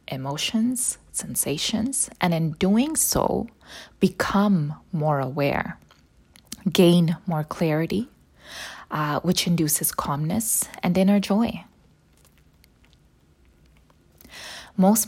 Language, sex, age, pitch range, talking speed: English, female, 20-39, 150-190 Hz, 80 wpm